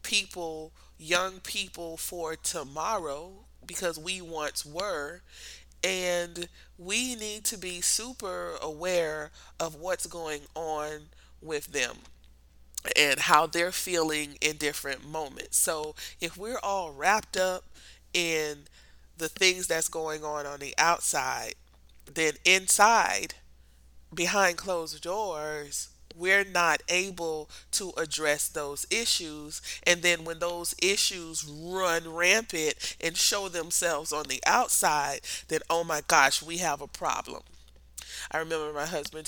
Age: 30-49